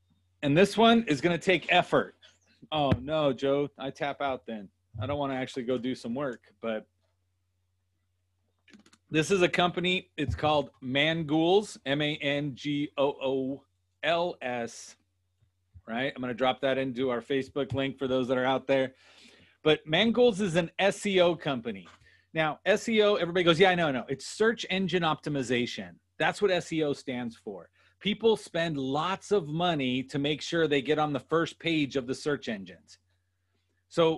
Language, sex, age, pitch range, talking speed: English, male, 40-59, 125-175 Hz, 165 wpm